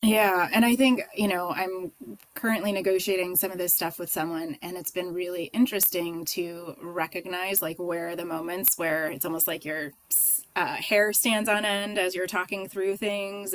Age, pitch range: 20-39, 170-210 Hz